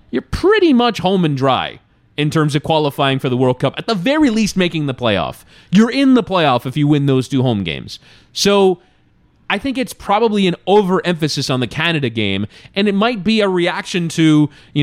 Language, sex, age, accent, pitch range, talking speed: English, male, 20-39, American, 130-165 Hz, 205 wpm